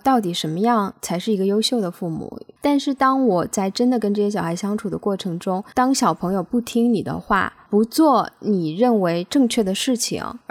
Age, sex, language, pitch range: 20-39, female, Chinese, 185-240 Hz